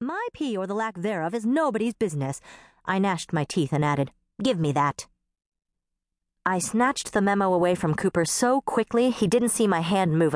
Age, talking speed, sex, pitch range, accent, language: 40-59, 190 wpm, female, 145-210 Hz, American, English